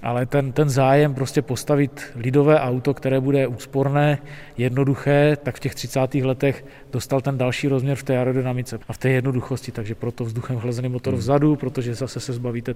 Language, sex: Czech, male